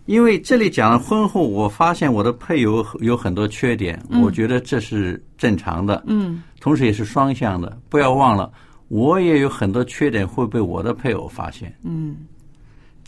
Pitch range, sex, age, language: 110-150 Hz, male, 50-69, Chinese